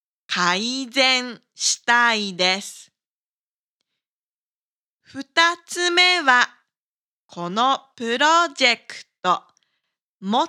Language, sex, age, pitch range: Japanese, female, 20-39, 200-290 Hz